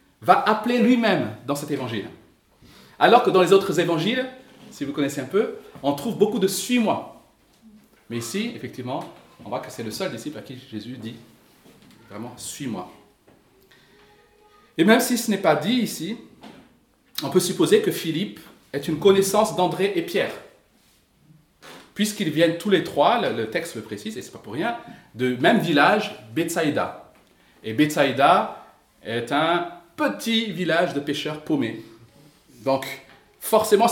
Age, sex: 40-59, male